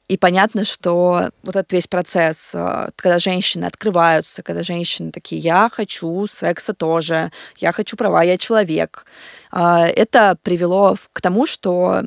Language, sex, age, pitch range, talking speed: Russian, female, 20-39, 175-215 Hz, 135 wpm